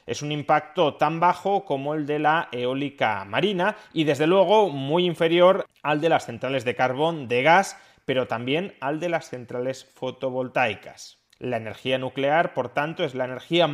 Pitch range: 120-165 Hz